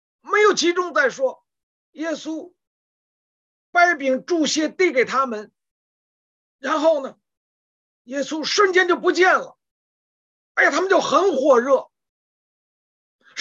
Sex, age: male, 50-69